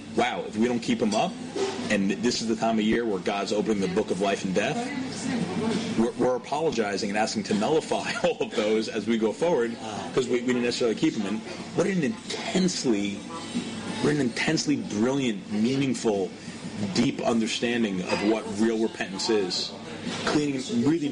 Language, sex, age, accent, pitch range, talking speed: English, male, 30-49, American, 110-140 Hz, 165 wpm